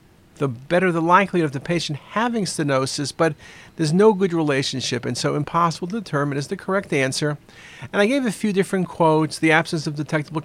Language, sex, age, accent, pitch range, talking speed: English, male, 50-69, American, 145-175 Hz, 195 wpm